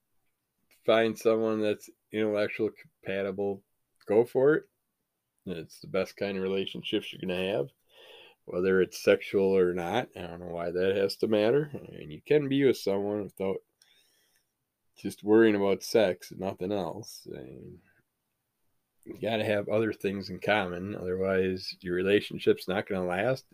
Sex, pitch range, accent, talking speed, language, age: male, 95-115 Hz, American, 160 wpm, English, 20-39